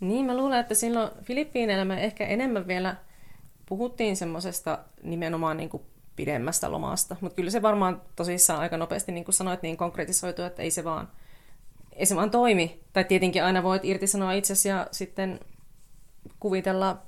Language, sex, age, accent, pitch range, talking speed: Finnish, female, 30-49, native, 165-200 Hz, 160 wpm